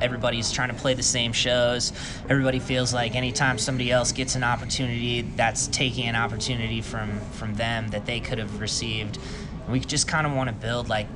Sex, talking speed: male, 195 wpm